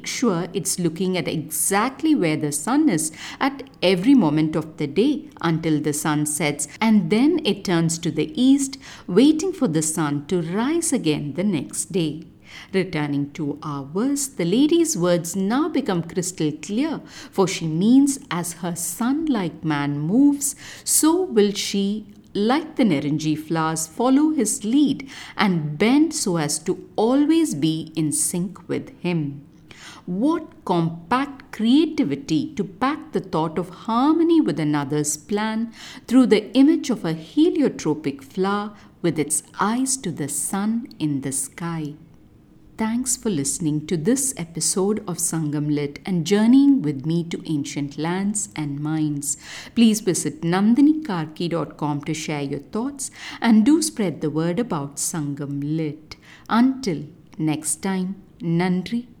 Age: 50-69